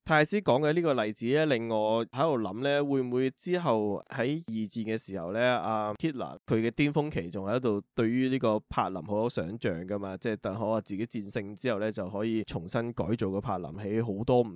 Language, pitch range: Chinese, 105-130 Hz